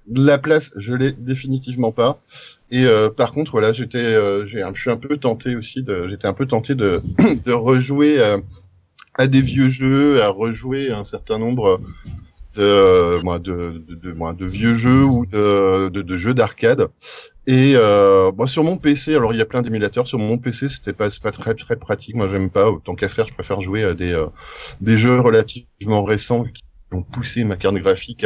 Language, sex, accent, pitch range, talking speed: French, male, French, 100-130 Hz, 205 wpm